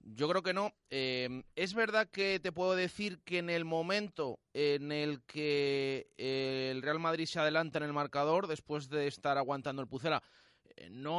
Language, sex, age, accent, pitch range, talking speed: Spanish, male, 30-49, Spanish, 140-180 Hz, 180 wpm